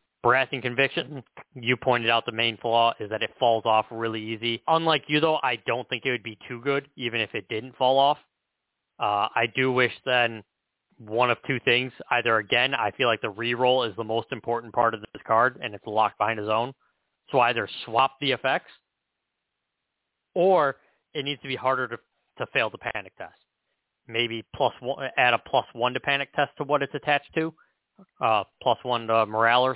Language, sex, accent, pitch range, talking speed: English, male, American, 115-135 Hz, 200 wpm